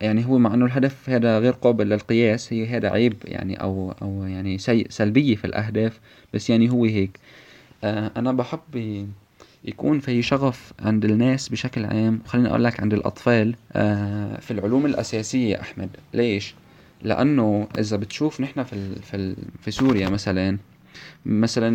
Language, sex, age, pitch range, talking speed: Arabic, male, 20-39, 105-125 Hz, 155 wpm